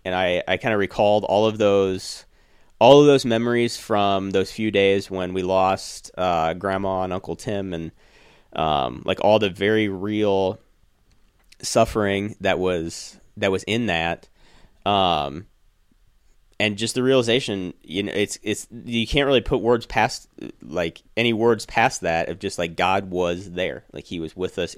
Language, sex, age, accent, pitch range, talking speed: English, male, 30-49, American, 90-115 Hz, 165 wpm